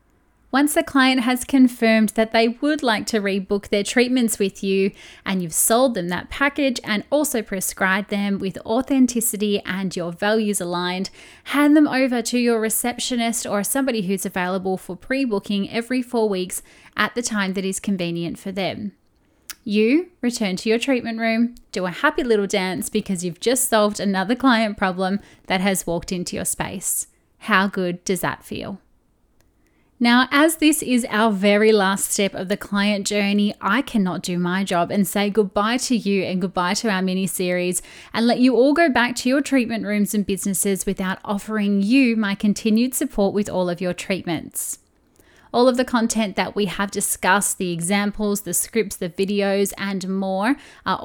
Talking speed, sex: 175 wpm, female